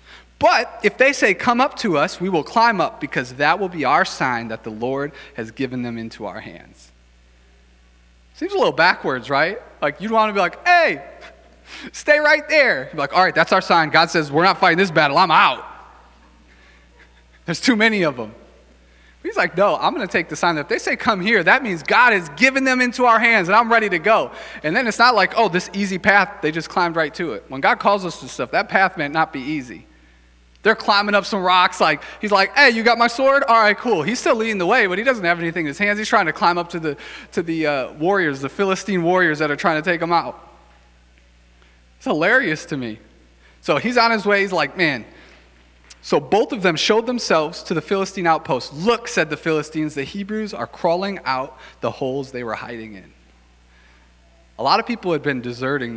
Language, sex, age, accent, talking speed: English, male, 30-49, American, 230 wpm